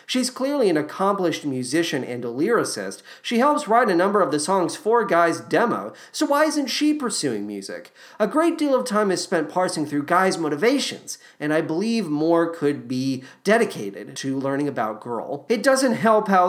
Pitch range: 145-210 Hz